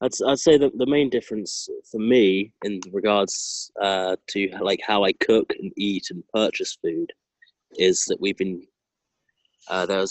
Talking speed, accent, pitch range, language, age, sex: 170 wpm, British, 90-120 Hz, English, 20-39, male